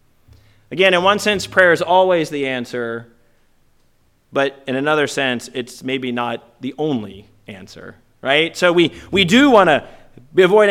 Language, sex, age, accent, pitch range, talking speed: English, male, 40-59, American, 120-175 Hz, 150 wpm